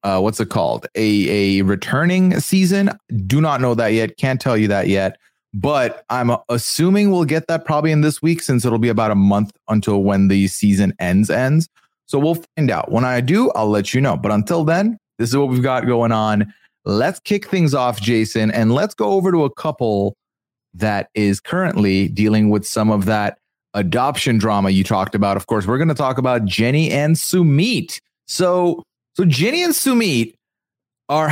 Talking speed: 195 wpm